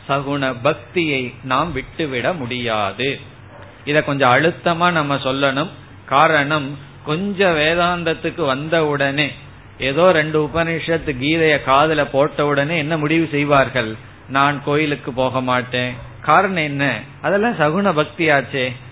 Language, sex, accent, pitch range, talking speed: Tamil, male, native, 125-155 Hz, 110 wpm